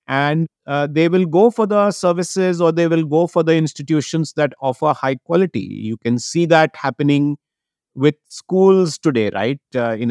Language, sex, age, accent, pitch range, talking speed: English, male, 50-69, Indian, 125-175 Hz, 180 wpm